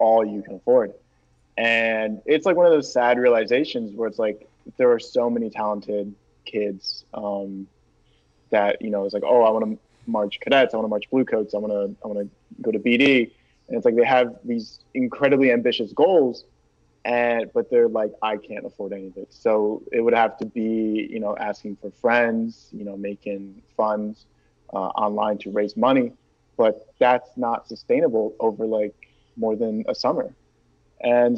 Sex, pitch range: male, 105-125 Hz